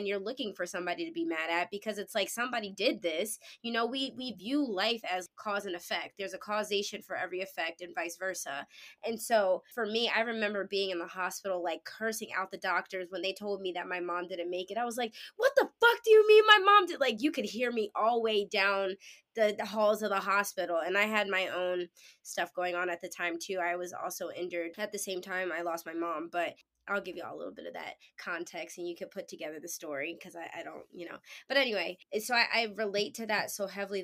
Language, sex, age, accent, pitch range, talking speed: English, female, 20-39, American, 175-210 Hz, 250 wpm